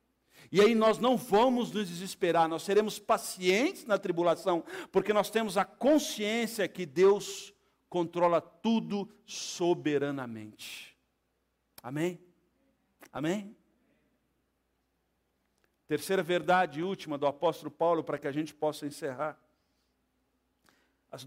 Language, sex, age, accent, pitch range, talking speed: Portuguese, male, 50-69, Brazilian, 190-300 Hz, 105 wpm